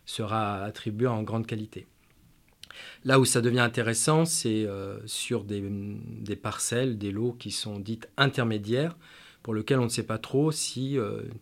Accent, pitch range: French, 110-130 Hz